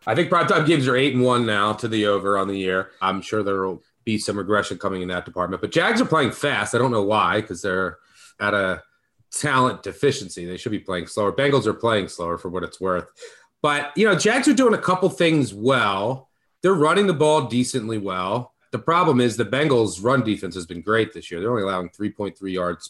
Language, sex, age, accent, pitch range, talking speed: English, male, 30-49, American, 100-145 Hz, 225 wpm